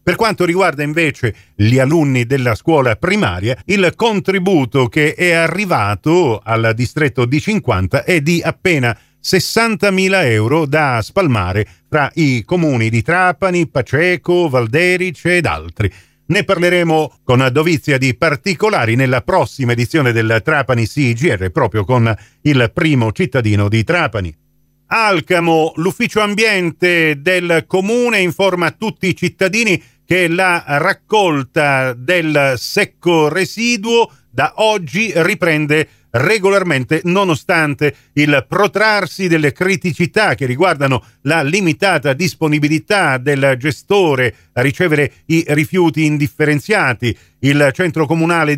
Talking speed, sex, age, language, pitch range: 115 wpm, male, 40-59, Italian, 130-180 Hz